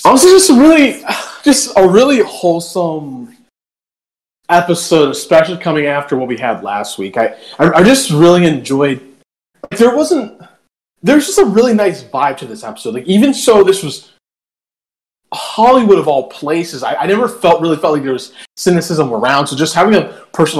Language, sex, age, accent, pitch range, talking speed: English, male, 20-39, American, 140-200 Hz, 180 wpm